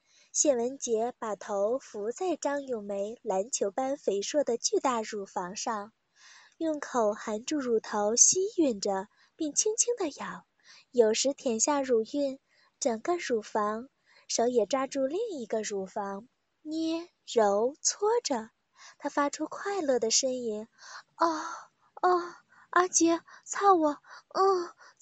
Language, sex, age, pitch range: Chinese, female, 20-39, 230-345 Hz